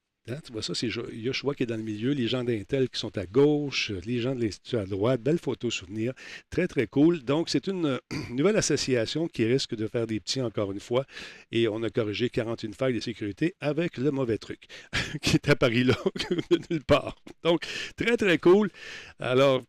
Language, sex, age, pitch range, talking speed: French, male, 50-69, 110-140 Hz, 205 wpm